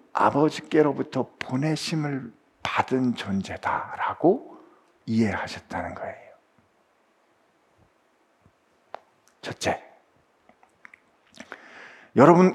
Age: 50-69